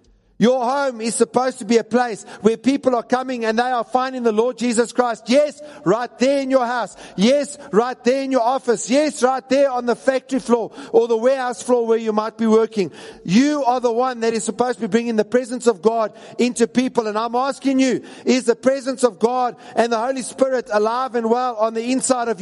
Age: 50-69